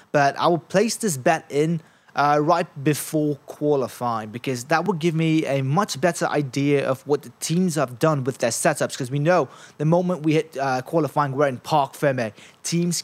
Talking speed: 200 wpm